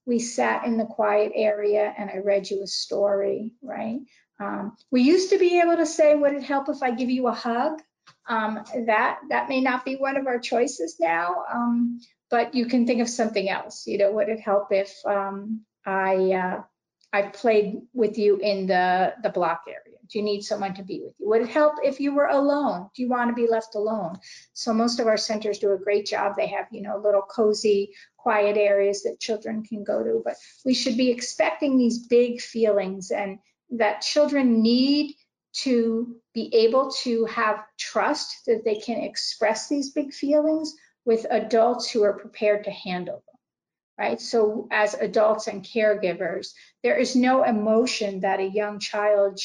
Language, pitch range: English, 205-250 Hz